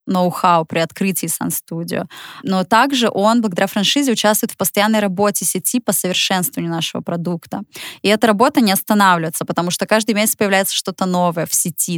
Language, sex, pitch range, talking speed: Russian, female, 180-210 Hz, 160 wpm